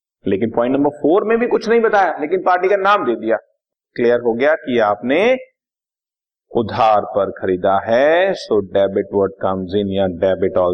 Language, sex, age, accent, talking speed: Hindi, male, 50-69, native, 175 wpm